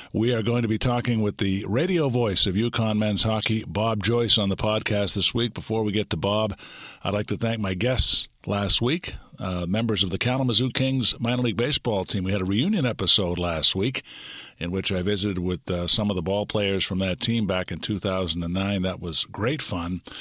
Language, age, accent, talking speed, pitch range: English, 50-69, American, 215 wpm, 95-120 Hz